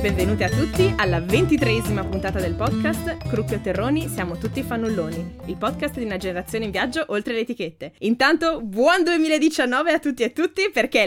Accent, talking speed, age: native, 180 wpm, 20-39